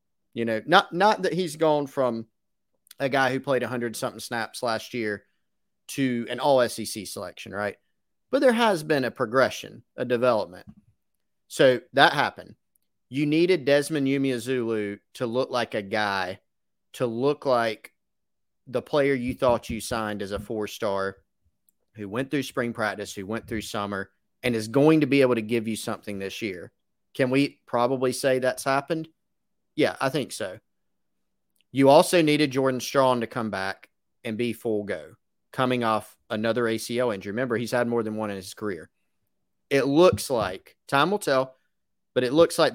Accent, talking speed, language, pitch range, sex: American, 175 wpm, English, 110-135 Hz, male